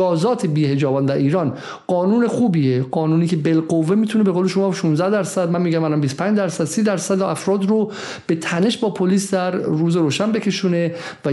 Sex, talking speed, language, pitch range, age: male, 175 wpm, Persian, 160-205 Hz, 50-69